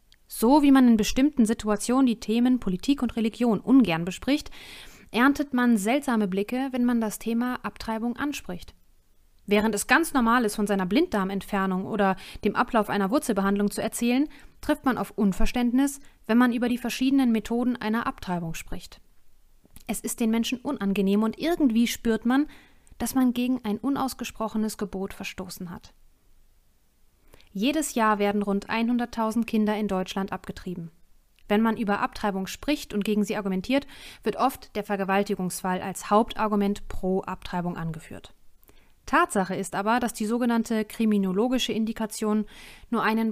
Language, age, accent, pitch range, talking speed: German, 30-49, German, 195-240 Hz, 145 wpm